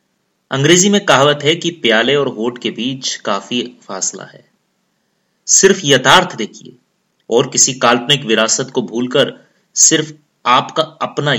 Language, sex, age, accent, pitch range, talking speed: Hindi, male, 30-49, native, 135-190 Hz, 130 wpm